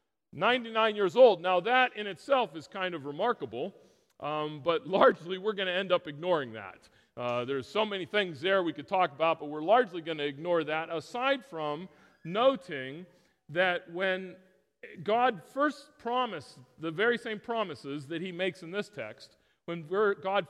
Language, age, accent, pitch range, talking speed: English, 40-59, American, 150-200 Hz, 170 wpm